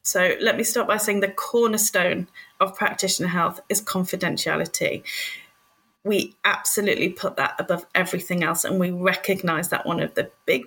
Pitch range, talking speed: 185-255 Hz, 160 wpm